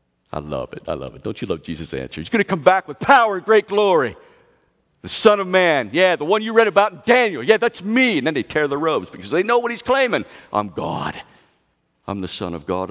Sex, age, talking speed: male, 50-69, 255 wpm